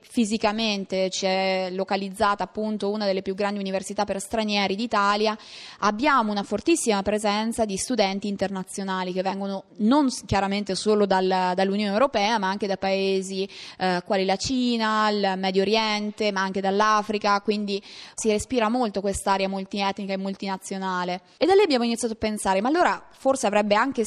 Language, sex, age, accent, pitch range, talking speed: Italian, female, 20-39, native, 195-240 Hz, 155 wpm